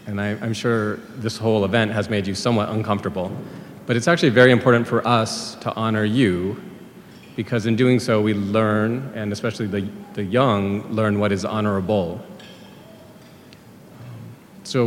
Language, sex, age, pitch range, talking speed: English, male, 40-59, 100-120 Hz, 155 wpm